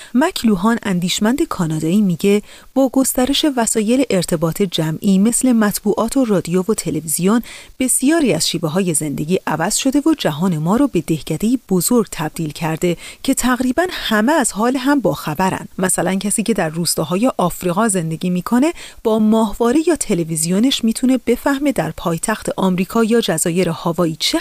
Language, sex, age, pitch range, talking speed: Persian, female, 30-49, 180-255 Hz, 145 wpm